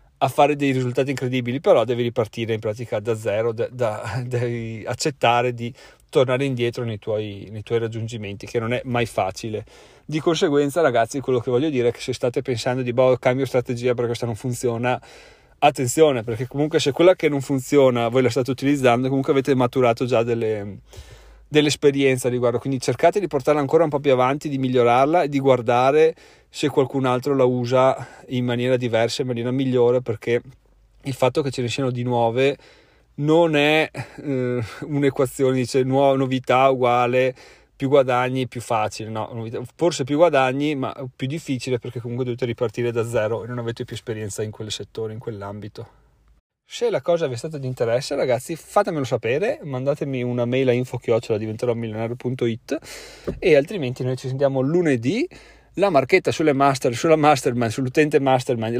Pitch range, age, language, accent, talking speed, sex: 120-140 Hz, 30-49, Italian, native, 170 wpm, male